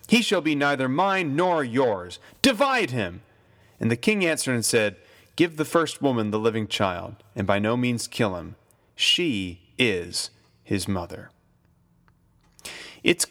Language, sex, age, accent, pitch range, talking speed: English, male, 30-49, American, 110-155 Hz, 150 wpm